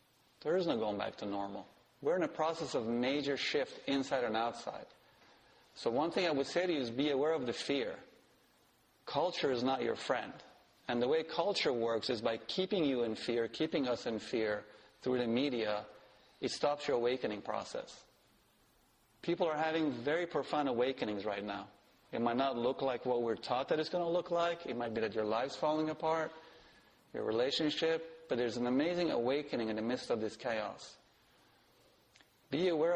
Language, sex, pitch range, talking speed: English, male, 115-145 Hz, 190 wpm